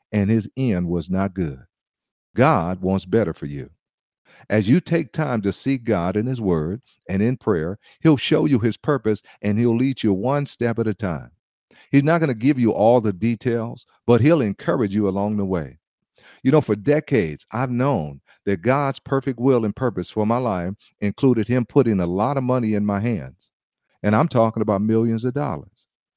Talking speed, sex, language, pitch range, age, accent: 195 wpm, male, English, 105-135 Hz, 50-69, American